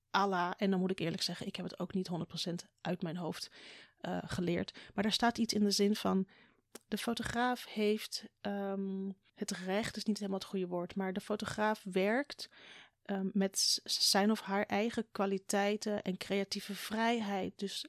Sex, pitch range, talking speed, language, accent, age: female, 185-225 Hz, 180 wpm, Dutch, Dutch, 30-49